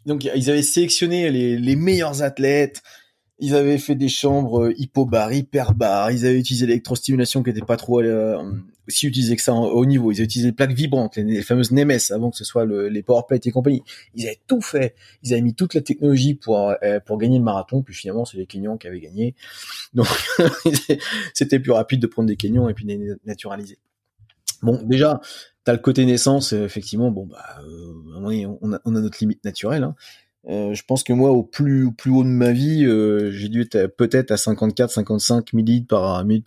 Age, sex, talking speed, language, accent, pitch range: 20-39, male, 210 wpm, French, French, 105-135 Hz